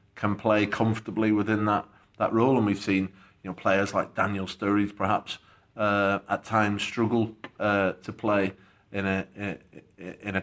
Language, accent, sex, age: English, British, male, 30-49